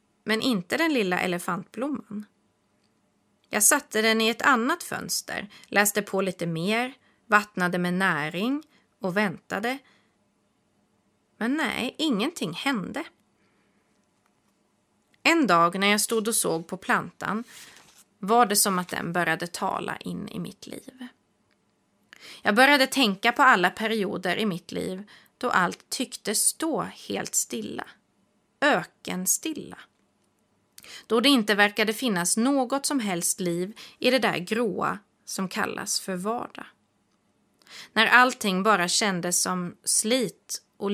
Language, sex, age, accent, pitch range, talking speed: Swedish, female, 30-49, native, 190-250 Hz, 125 wpm